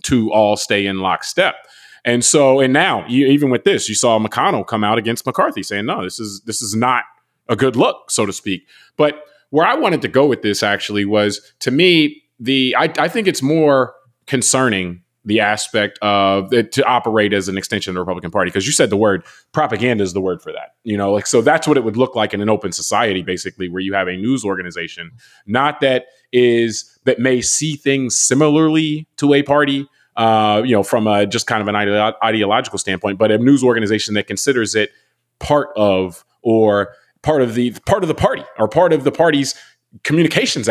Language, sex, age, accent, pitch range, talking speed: English, male, 30-49, American, 100-130 Hz, 205 wpm